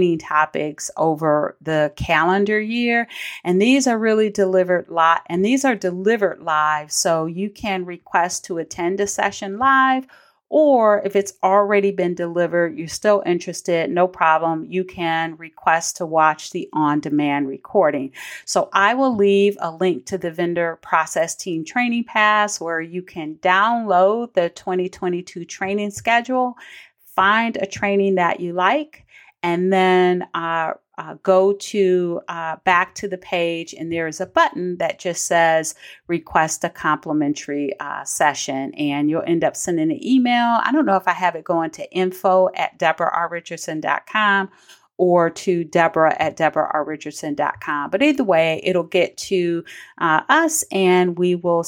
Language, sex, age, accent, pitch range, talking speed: English, female, 40-59, American, 165-200 Hz, 150 wpm